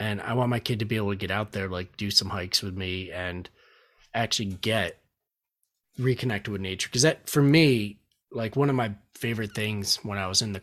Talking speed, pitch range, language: 220 wpm, 95-120 Hz, English